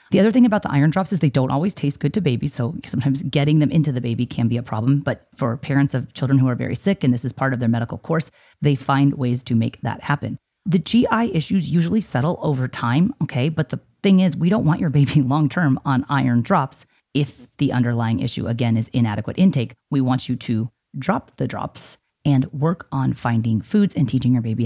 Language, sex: English, female